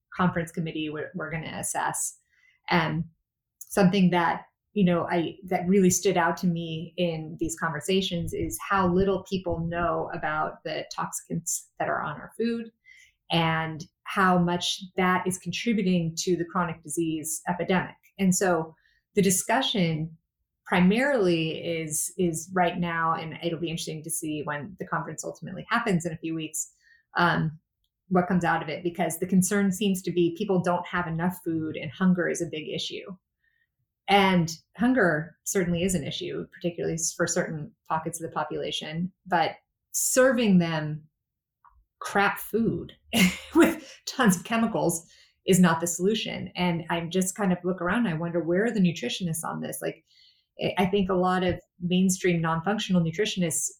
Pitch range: 165-190 Hz